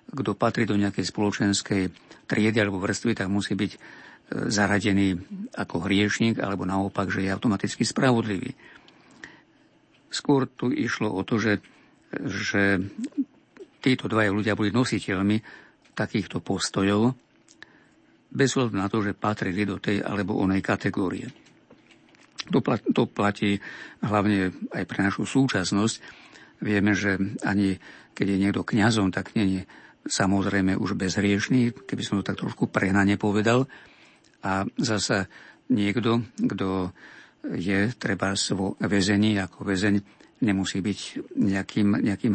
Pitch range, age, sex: 100-110 Hz, 50-69, male